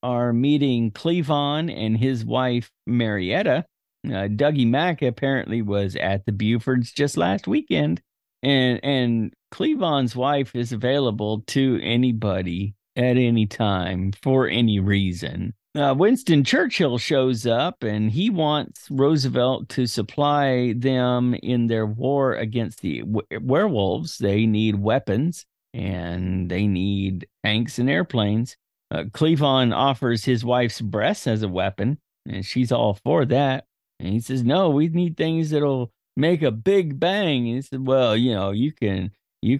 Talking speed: 145 wpm